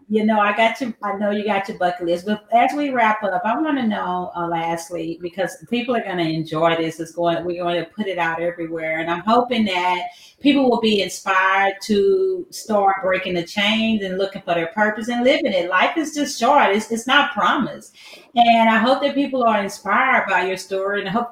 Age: 40-59